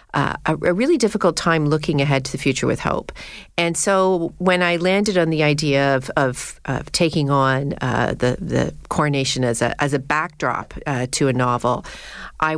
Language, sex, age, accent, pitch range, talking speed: English, female, 40-59, American, 135-170 Hz, 190 wpm